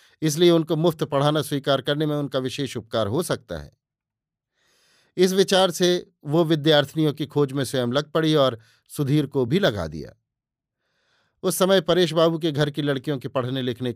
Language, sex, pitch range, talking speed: Hindi, male, 135-170 Hz, 175 wpm